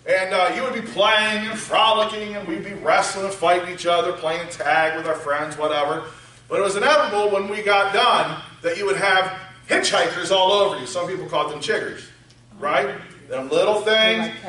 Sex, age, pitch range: male, 40-59, 190-235 Hz